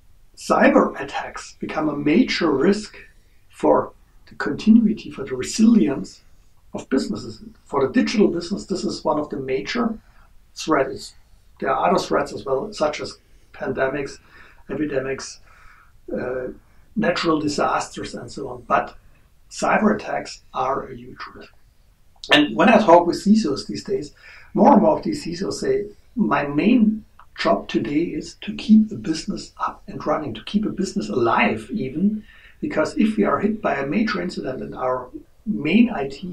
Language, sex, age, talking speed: English, male, 60-79, 155 wpm